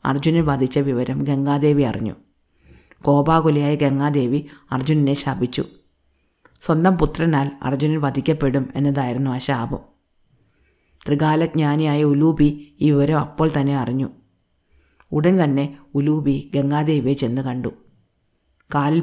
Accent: native